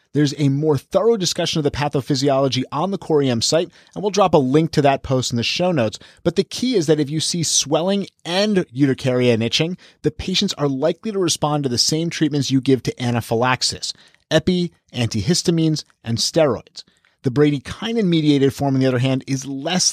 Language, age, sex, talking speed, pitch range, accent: English, 30-49, male, 190 wpm, 130-165 Hz, American